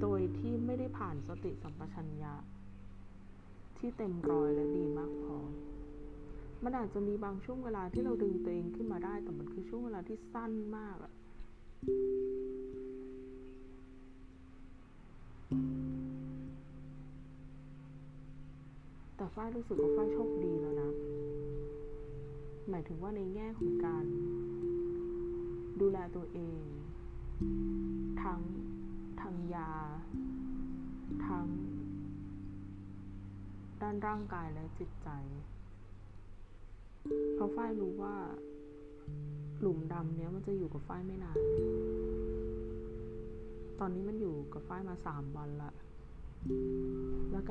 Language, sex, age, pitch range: Thai, female, 20-39, 100-150 Hz